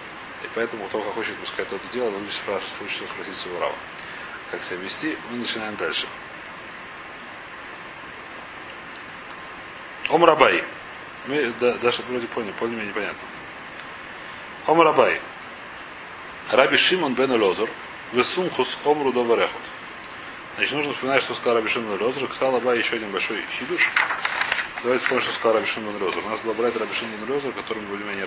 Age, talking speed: 30-49, 140 wpm